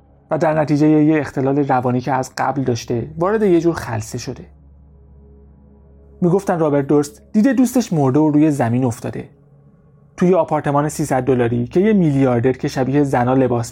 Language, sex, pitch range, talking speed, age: Persian, male, 105-155 Hz, 160 wpm, 30-49